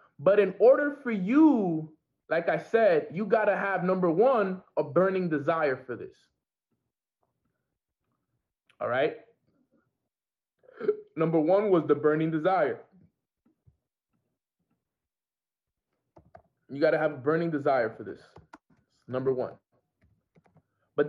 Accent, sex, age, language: American, male, 20-39, English